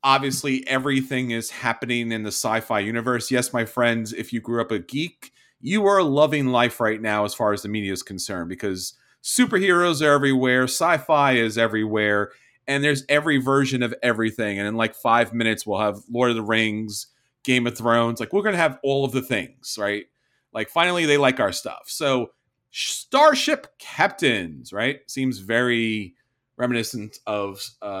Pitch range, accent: 115-150 Hz, American